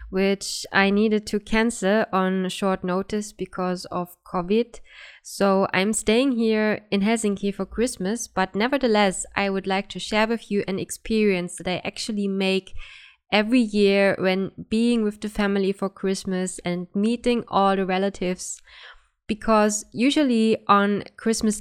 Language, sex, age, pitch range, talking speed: English, female, 20-39, 190-220 Hz, 145 wpm